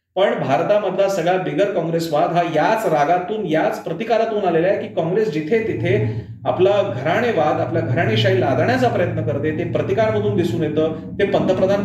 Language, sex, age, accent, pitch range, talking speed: Marathi, male, 40-59, native, 155-210 Hz, 145 wpm